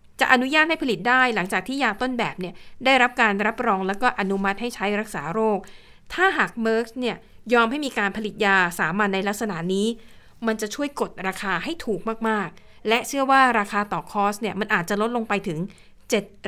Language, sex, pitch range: Thai, female, 190-230 Hz